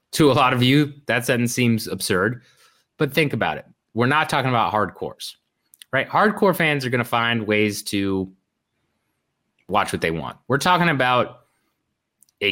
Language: English